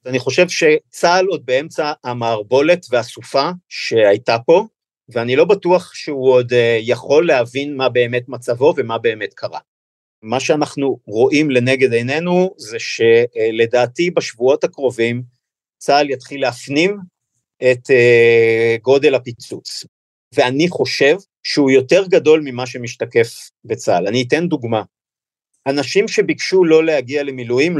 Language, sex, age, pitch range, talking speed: Hebrew, male, 50-69, 125-175 Hz, 115 wpm